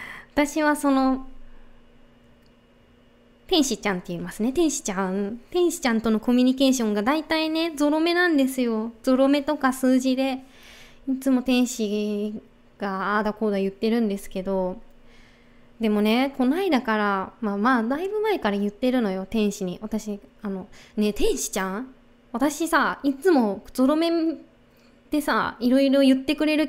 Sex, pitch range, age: female, 205-295 Hz, 20-39